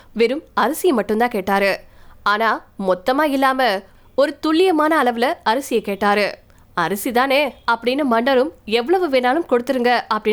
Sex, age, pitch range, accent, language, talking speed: female, 20-39, 230-295 Hz, native, Tamil, 105 wpm